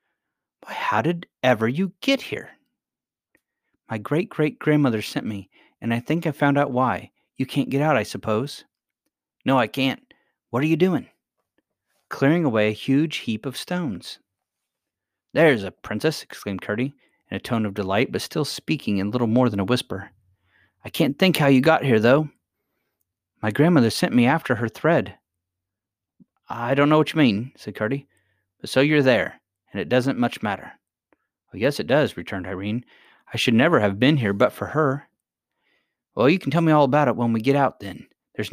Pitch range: 110-150 Hz